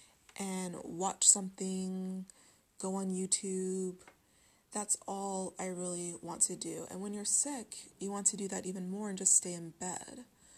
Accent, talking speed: American, 165 wpm